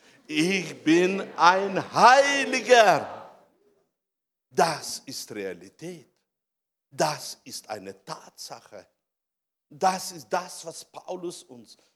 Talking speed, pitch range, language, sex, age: 85 wpm, 160-220 Hz, German, male, 60-79